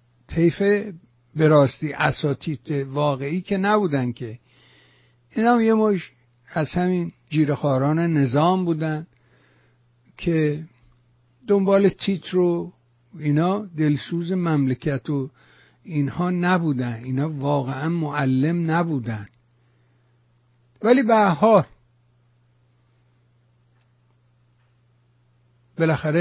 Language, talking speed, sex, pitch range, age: English, 80 wpm, male, 120-165 Hz, 60-79